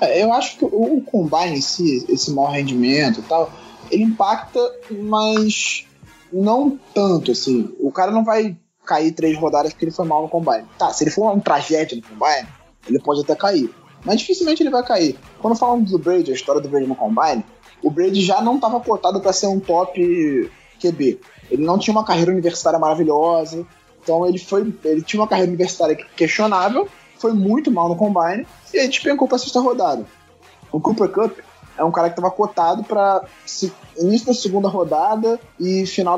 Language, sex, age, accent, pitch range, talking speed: Portuguese, male, 20-39, Brazilian, 160-220 Hz, 185 wpm